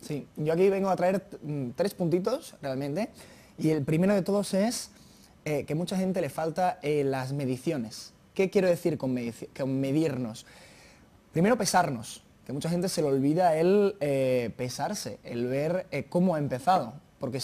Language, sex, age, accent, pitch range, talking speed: Spanish, male, 20-39, Spanish, 130-190 Hz, 180 wpm